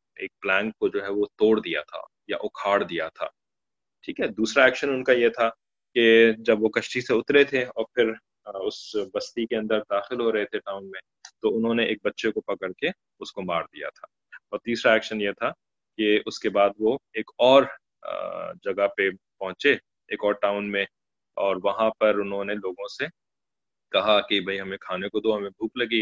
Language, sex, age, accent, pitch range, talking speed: English, male, 20-39, Indian, 100-125 Hz, 185 wpm